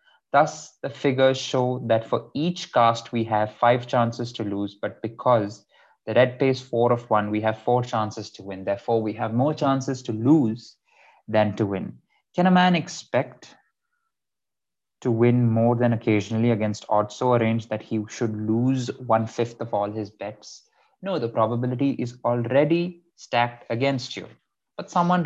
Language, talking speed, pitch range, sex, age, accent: English, 170 wpm, 110-140 Hz, male, 20-39, Indian